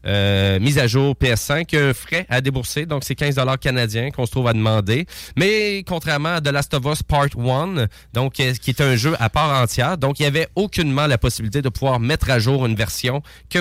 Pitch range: 115-135 Hz